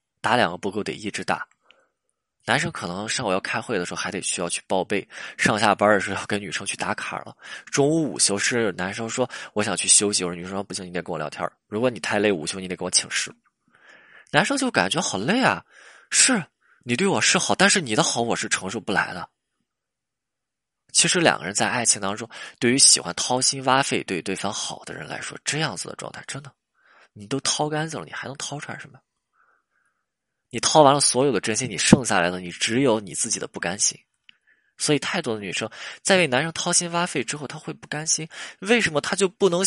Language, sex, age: Chinese, male, 20-39